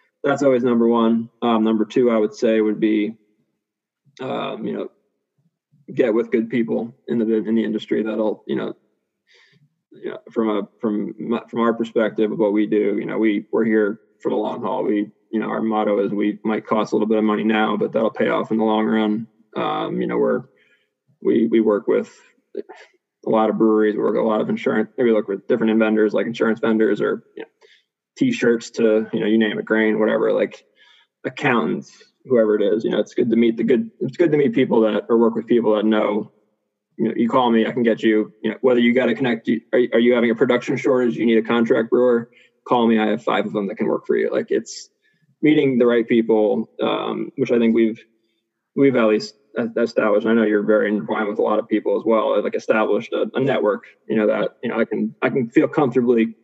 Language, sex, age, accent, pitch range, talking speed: English, male, 20-39, American, 110-120 Hz, 235 wpm